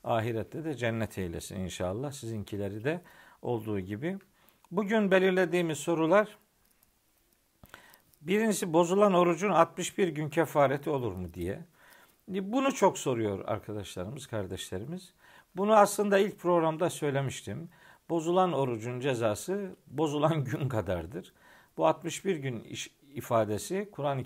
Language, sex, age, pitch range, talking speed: Turkish, male, 50-69, 105-175 Hz, 105 wpm